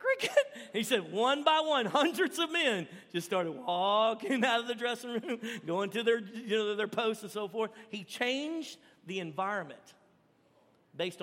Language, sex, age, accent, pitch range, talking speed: English, male, 50-69, American, 175-230 Hz, 165 wpm